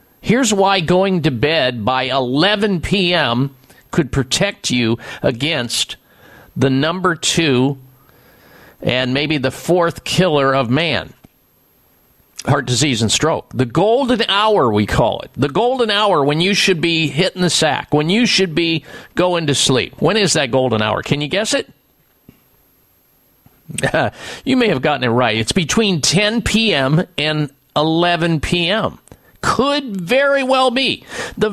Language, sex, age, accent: English, male, 50-69, American